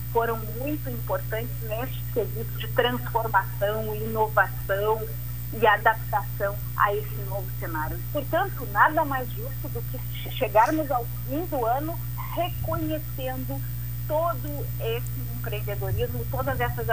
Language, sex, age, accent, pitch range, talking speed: Portuguese, female, 40-59, Brazilian, 115-130 Hz, 110 wpm